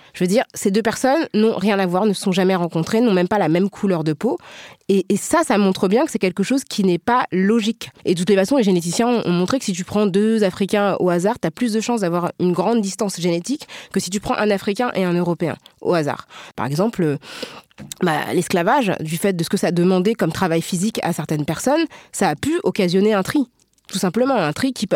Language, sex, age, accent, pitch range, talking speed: French, female, 20-39, French, 175-215 Hz, 250 wpm